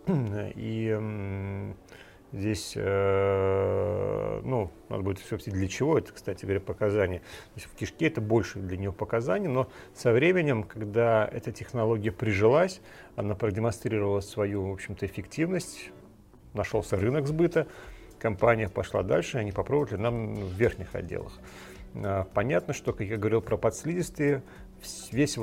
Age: 40-59